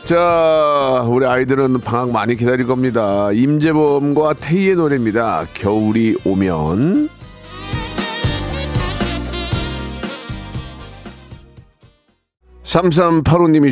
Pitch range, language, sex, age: 100-145 Hz, Korean, male, 40-59